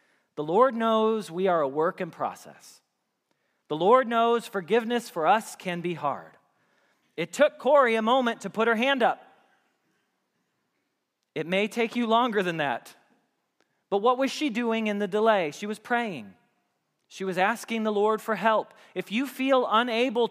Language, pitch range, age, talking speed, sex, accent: English, 185-235 Hz, 40-59, 170 wpm, male, American